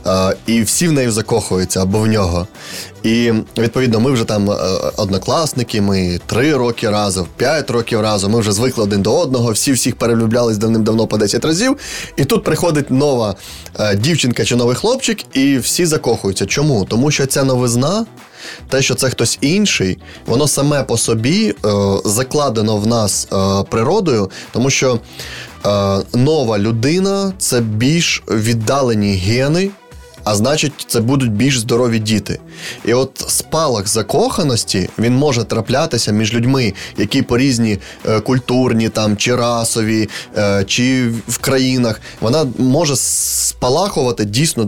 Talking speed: 145 wpm